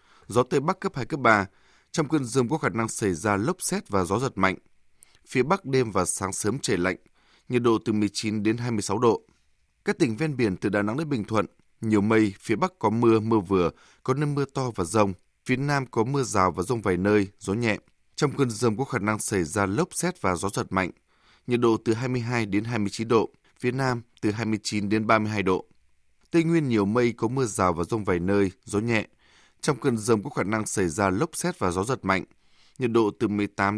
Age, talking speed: 20-39, 230 wpm